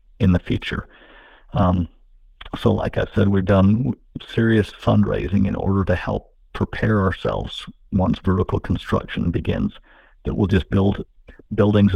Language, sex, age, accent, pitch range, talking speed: English, male, 60-79, American, 95-105 Hz, 135 wpm